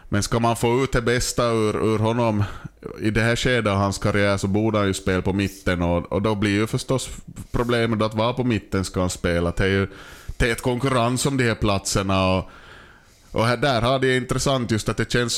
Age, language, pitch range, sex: 20-39, Swedish, 100-120 Hz, male